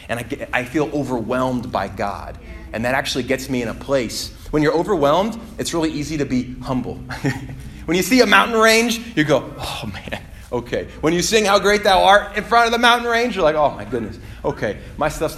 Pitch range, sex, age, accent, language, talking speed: 105-165 Hz, male, 30-49, American, English, 225 wpm